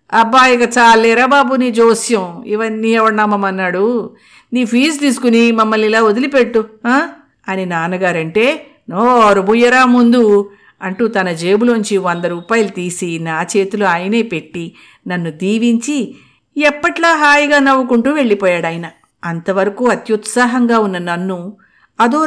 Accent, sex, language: native, female, Telugu